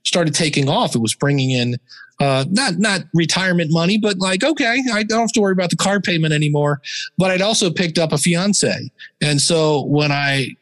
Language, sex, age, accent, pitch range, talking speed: English, male, 40-59, American, 130-170 Hz, 205 wpm